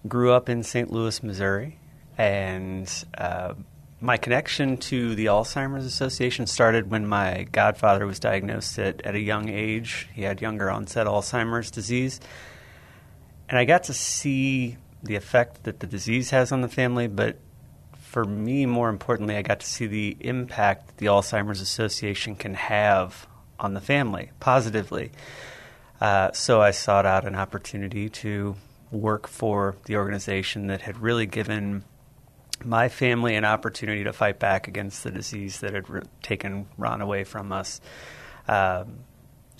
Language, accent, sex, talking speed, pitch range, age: English, American, male, 150 wpm, 100-120 Hz, 30-49